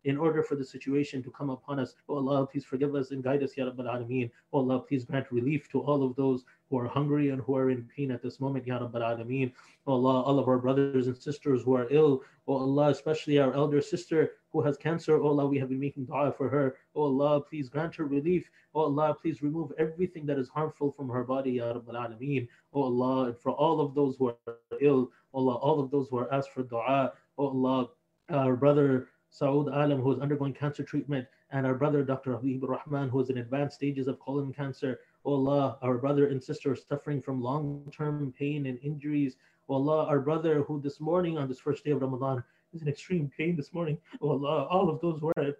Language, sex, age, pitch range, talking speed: English, male, 20-39, 130-150 Hz, 230 wpm